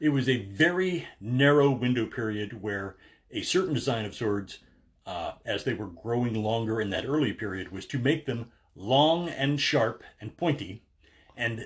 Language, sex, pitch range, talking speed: English, male, 110-150 Hz, 170 wpm